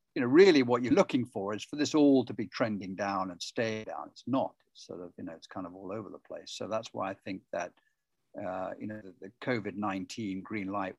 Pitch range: 100-130 Hz